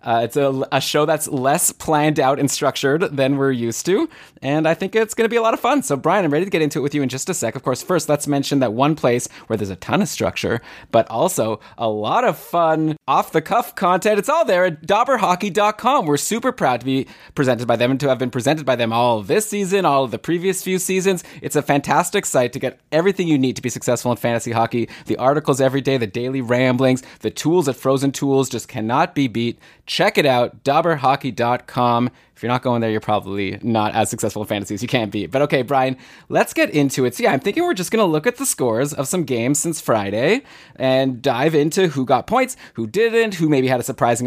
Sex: male